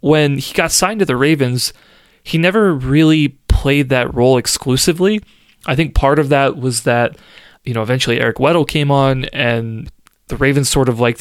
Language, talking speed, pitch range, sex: English, 180 wpm, 120-140 Hz, male